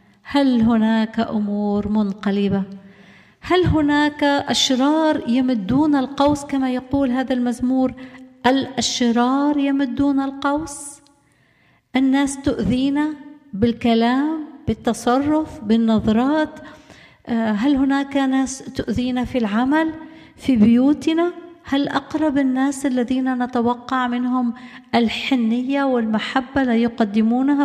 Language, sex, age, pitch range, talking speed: Arabic, female, 50-69, 225-285 Hz, 85 wpm